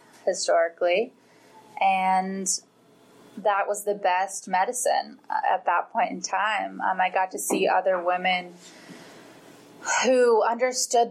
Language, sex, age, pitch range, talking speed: English, female, 10-29, 180-220 Hz, 115 wpm